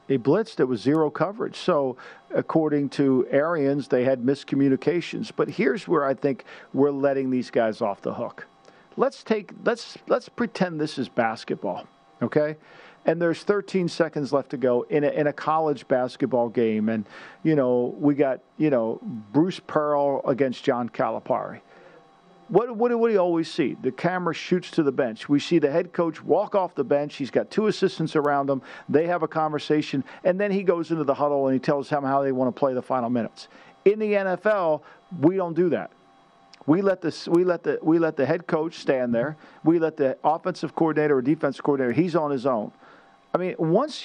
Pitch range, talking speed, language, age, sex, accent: 140-180 Hz, 200 wpm, English, 50-69, male, American